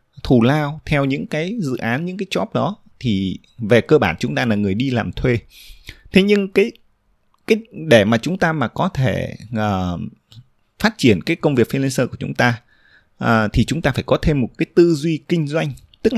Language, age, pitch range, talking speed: Vietnamese, 20-39, 115-170 Hz, 205 wpm